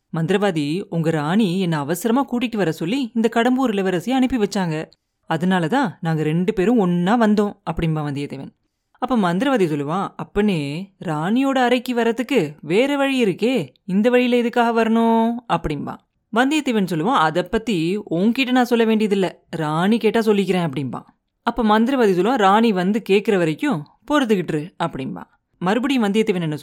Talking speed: 90 wpm